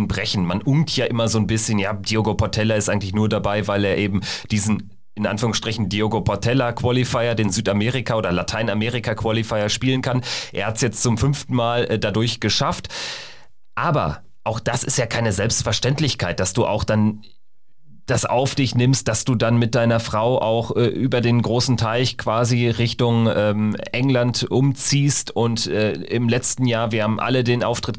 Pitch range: 110-130 Hz